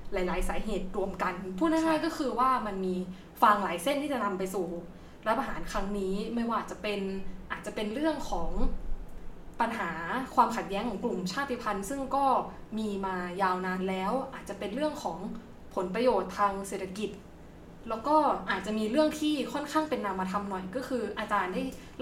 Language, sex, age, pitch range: Thai, female, 20-39, 190-250 Hz